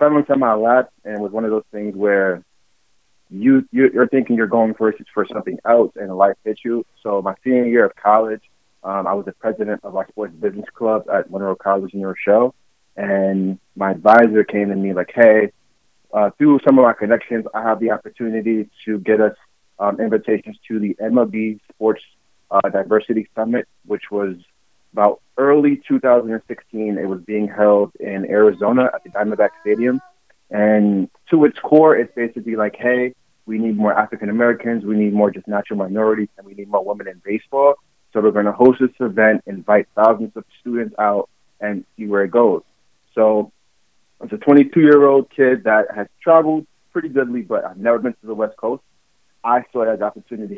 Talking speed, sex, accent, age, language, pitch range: 185 wpm, male, American, 30-49, English, 105-120 Hz